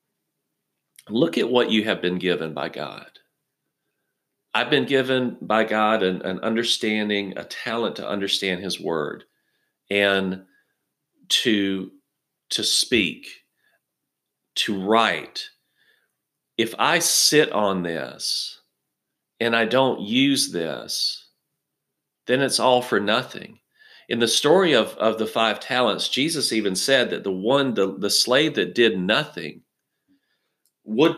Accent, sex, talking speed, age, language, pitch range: American, male, 125 wpm, 40-59, English, 105-145 Hz